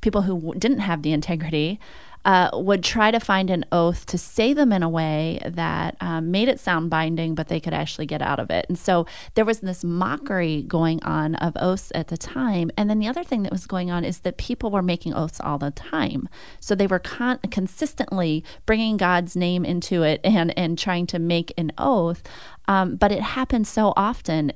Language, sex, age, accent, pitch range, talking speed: English, female, 30-49, American, 165-200 Hz, 215 wpm